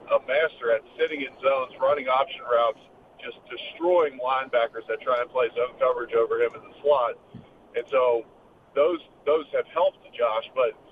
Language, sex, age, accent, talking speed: English, male, 50-69, American, 170 wpm